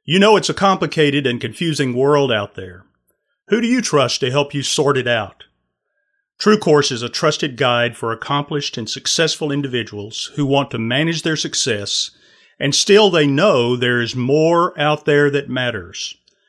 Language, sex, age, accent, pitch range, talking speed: English, male, 40-59, American, 120-165 Hz, 175 wpm